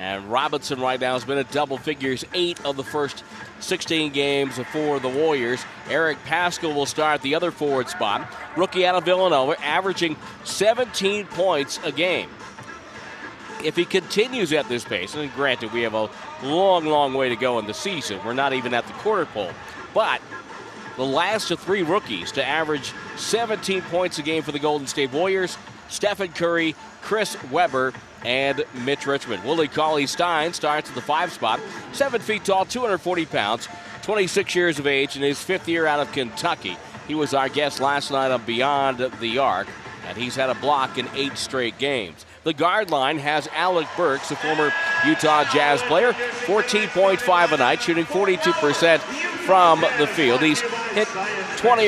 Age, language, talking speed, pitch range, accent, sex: 40-59, English, 175 wpm, 135-185 Hz, American, male